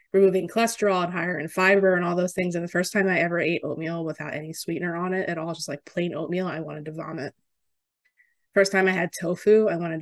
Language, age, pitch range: English, 20-39, 165-195 Hz